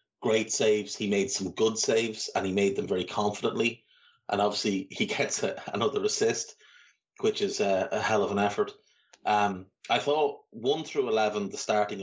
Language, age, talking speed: English, 30-49, 175 wpm